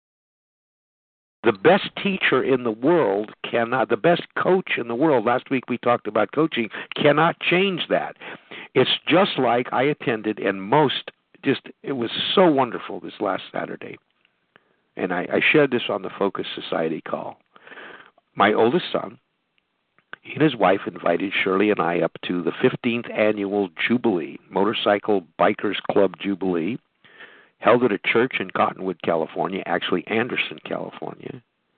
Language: English